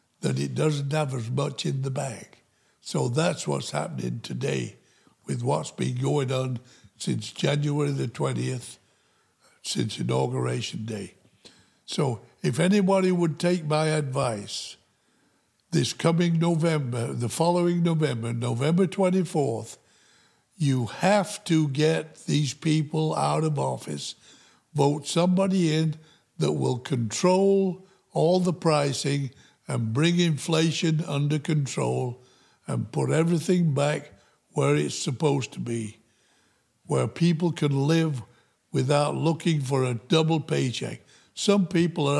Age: 60-79